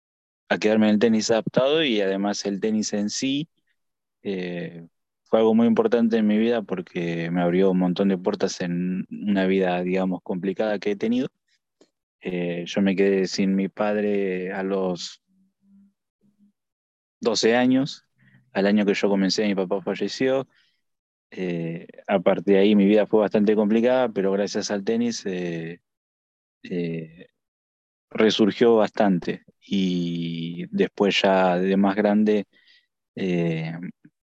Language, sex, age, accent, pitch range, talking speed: Spanish, male, 20-39, Argentinian, 90-110 Hz, 135 wpm